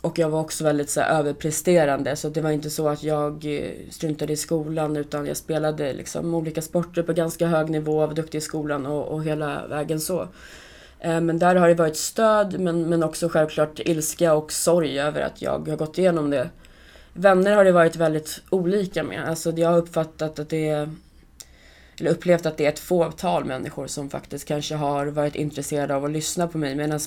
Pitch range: 150-165 Hz